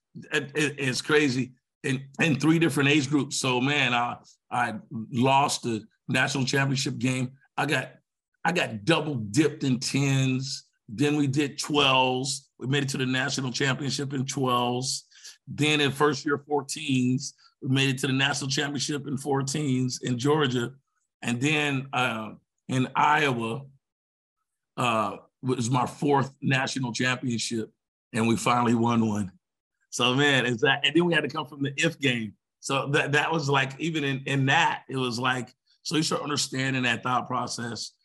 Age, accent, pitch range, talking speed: 50-69, American, 125-145 Hz, 160 wpm